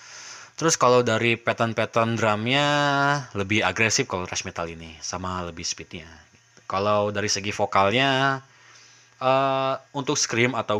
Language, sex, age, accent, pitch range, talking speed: Indonesian, male, 20-39, native, 100-125 Hz, 130 wpm